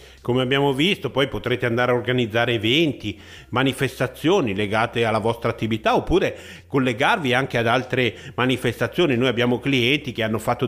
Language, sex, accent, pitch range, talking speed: Italian, male, native, 115-130 Hz, 145 wpm